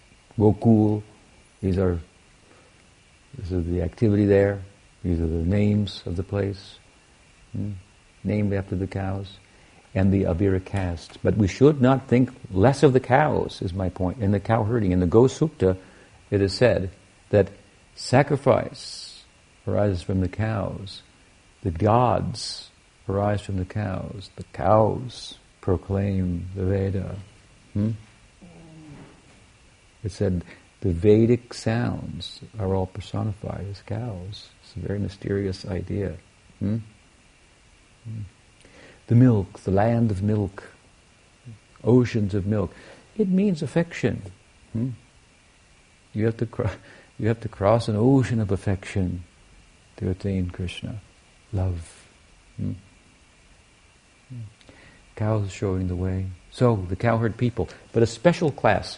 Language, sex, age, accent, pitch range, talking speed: English, male, 60-79, American, 95-110 Hz, 125 wpm